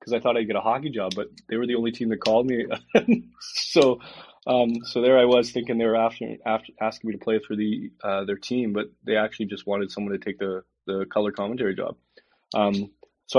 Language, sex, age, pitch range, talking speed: English, male, 20-39, 100-115 Hz, 235 wpm